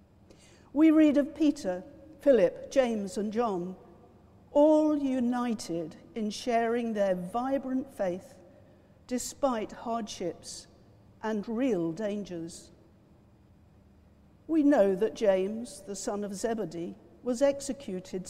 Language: English